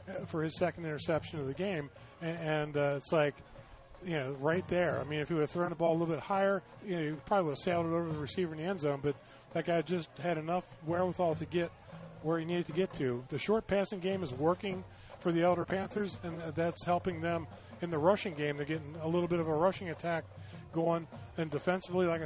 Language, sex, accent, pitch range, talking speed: English, male, American, 150-180 Hz, 235 wpm